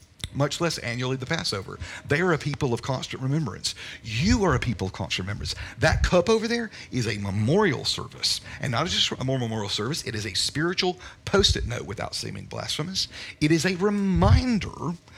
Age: 40-59